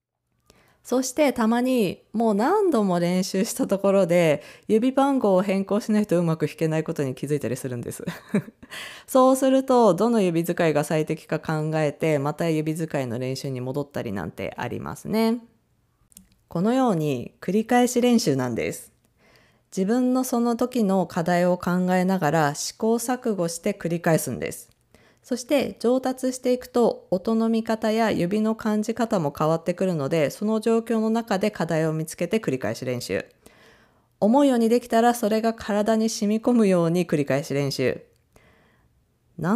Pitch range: 155-225 Hz